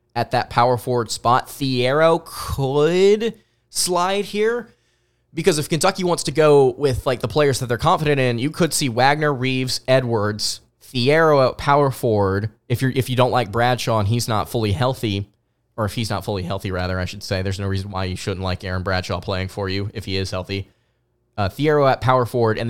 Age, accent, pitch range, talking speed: 20-39, American, 105-140 Hz, 205 wpm